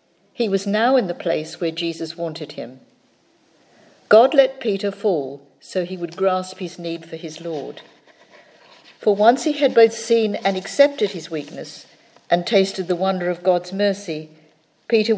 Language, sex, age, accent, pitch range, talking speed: English, female, 50-69, British, 165-210 Hz, 160 wpm